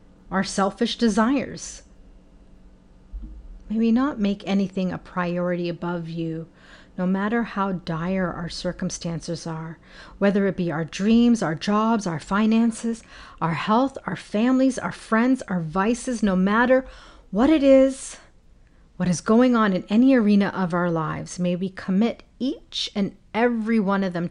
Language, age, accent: English, 40-59, American